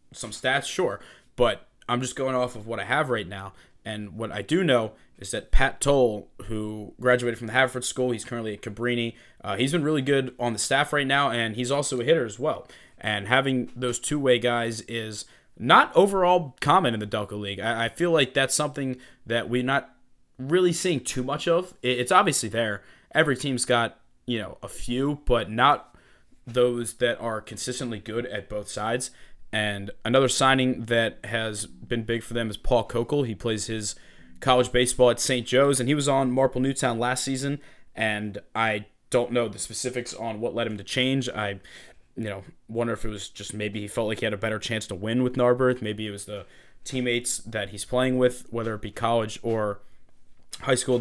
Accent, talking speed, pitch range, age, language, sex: American, 205 wpm, 110-130 Hz, 20-39, English, male